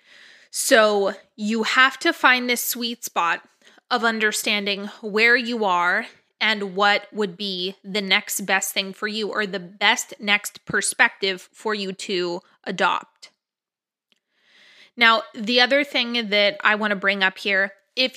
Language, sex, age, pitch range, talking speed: English, female, 20-39, 200-240 Hz, 145 wpm